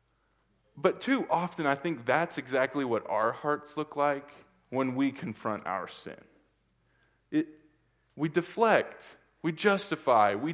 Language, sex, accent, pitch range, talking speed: English, male, American, 125-190 Hz, 125 wpm